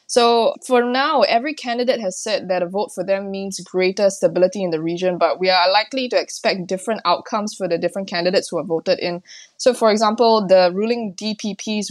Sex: female